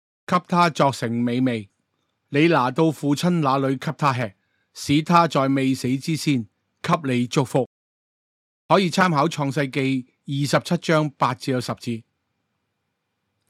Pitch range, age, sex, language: 125-155 Hz, 30-49, male, Chinese